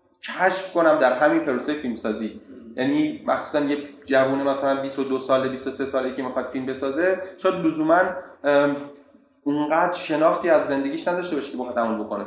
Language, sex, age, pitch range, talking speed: Persian, male, 30-49, 130-185 Hz, 155 wpm